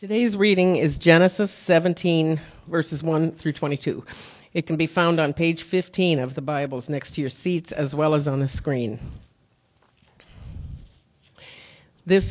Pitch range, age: 140-170 Hz, 50-69